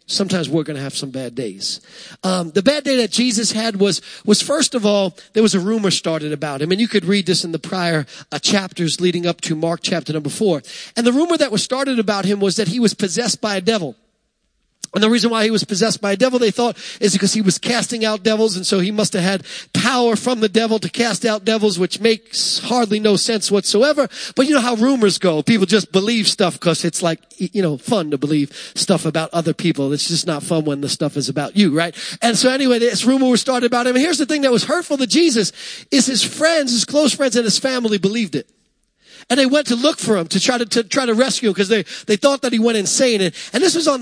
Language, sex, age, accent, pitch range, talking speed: English, male, 40-59, American, 195-270 Hz, 260 wpm